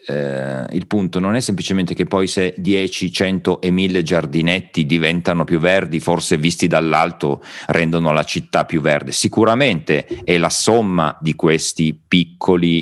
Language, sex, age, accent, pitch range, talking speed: Italian, male, 40-59, native, 80-95 Hz, 150 wpm